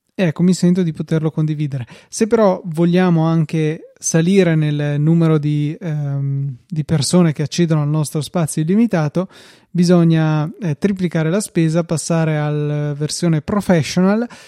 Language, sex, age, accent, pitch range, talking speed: Italian, male, 20-39, native, 155-175 Hz, 135 wpm